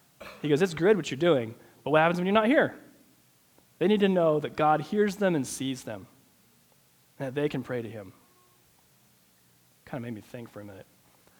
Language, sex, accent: English, male, American